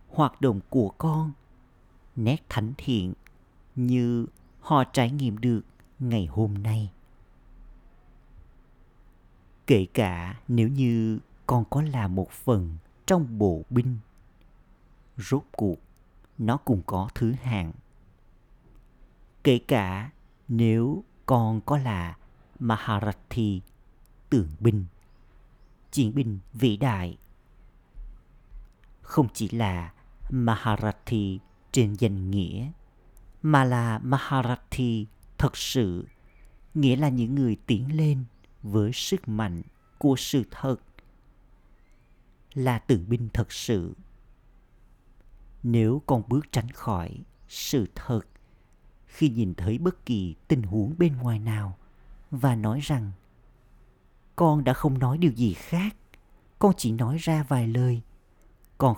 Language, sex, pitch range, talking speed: Vietnamese, male, 100-130 Hz, 110 wpm